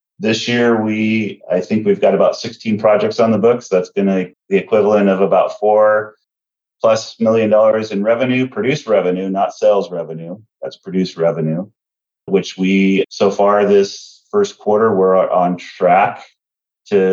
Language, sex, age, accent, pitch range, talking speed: English, male, 30-49, American, 90-105 Hz, 155 wpm